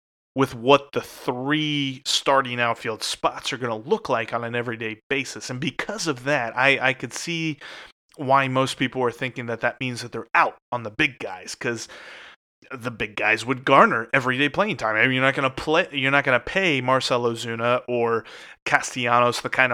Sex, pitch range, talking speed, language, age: male, 120-140 Hz, 200 wpm, English, 30-49